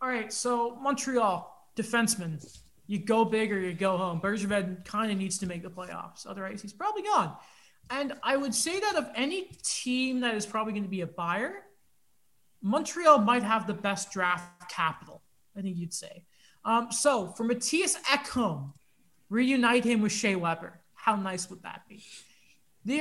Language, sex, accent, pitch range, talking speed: English, male, American, 185-245 Hz, 175 wpm